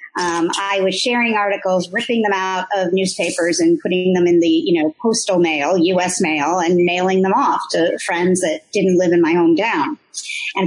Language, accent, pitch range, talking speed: English, American, 185-275 Hz, 195 wpm